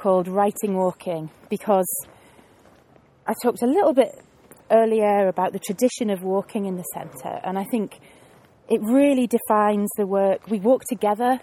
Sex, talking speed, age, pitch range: female, 150 wpm, 30-49, 185-225 Hz